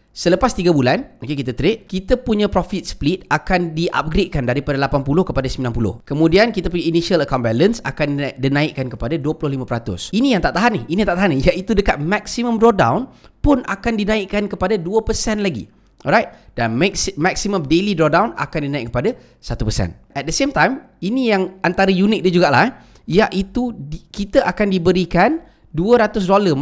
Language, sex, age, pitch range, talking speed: Malay, male, 20-39, 150-215 Hz, 160 wpm